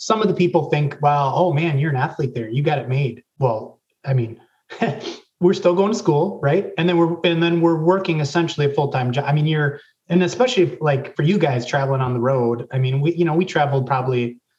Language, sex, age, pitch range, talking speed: English, male, 30-49, 125-150 Hz, 240 wpm